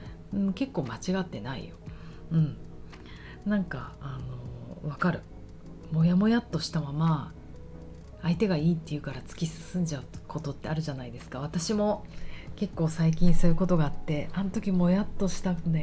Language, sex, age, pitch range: Japanese, female, 40-59, 145-180 Hz